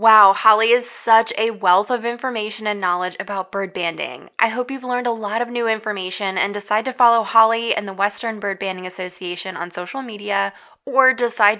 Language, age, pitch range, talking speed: English, 20-39, 185-230 Hz, 195 wpm